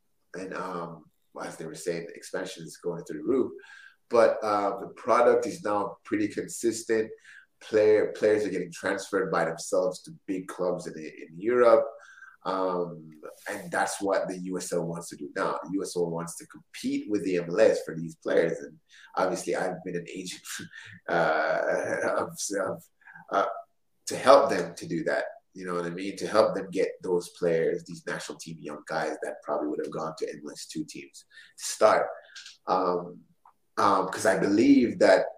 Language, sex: English, male